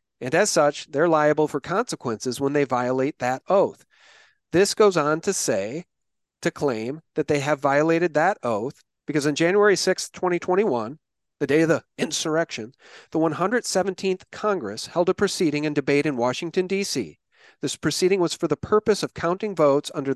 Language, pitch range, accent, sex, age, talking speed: English, 150-195 Hz, American, male, 40-59, 165 wpm